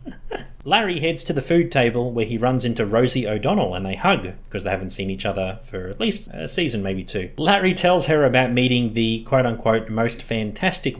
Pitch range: 110-150 Hz